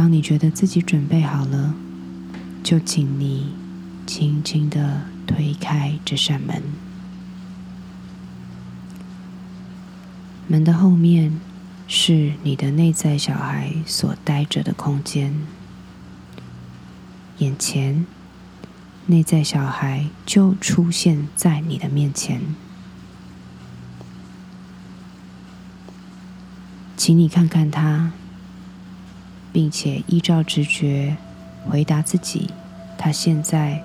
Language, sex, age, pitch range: Chinese, female, 20-39, 140-185 Hz